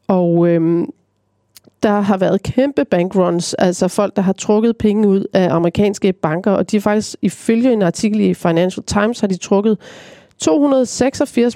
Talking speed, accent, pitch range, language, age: 160 wpm, native, 180-215 Hz, Danish, 30-49